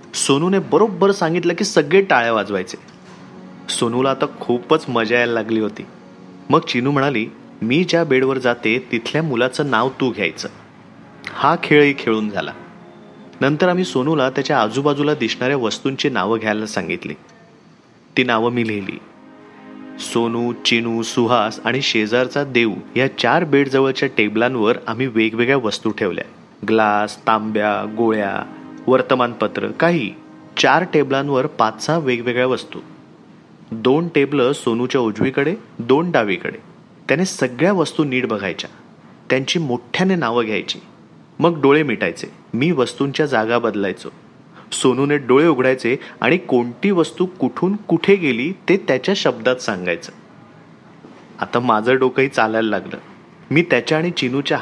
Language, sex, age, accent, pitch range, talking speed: Marathi, male, 30-49, native, 115-150 Hz, 125 wpm